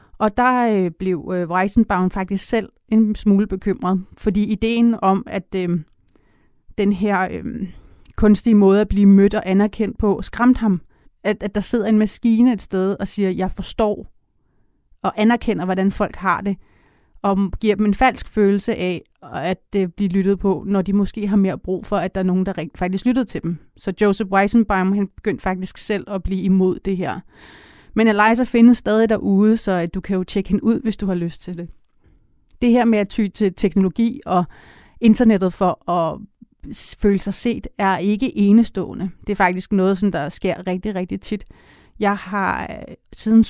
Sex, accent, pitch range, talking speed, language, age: female, native, 190-220 Hz, 180 wpm, Danish, 30-49